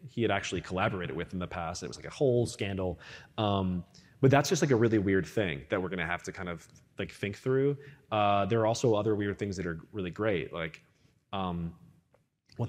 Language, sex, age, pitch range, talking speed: English, male, 20-39, 95-120 Hz, 225 wpm